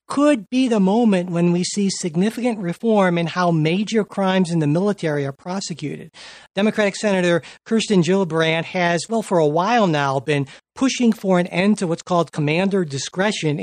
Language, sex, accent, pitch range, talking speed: English, male, American, 155-200 Hz, 165 wpm